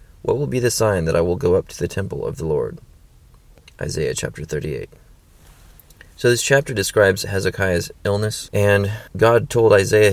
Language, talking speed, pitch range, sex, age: English, 170 wpm, 90-110 Hz, male, 30-49